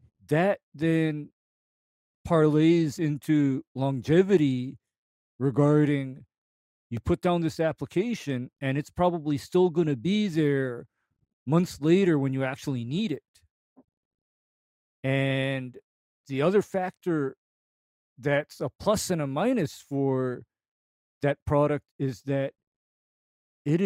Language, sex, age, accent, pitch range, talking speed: English, male, 40-59, American, 135-165 Hz, 105 wpm